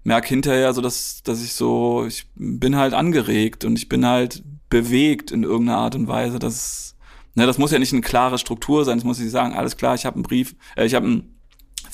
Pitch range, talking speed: 115-135 Hz, 225 wpm